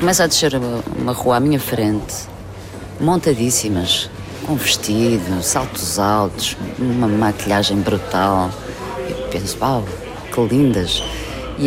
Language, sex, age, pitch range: Portuguese, female, 30-49, 105-135 Hz